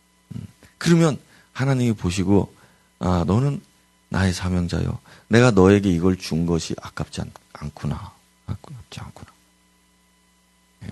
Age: 40-59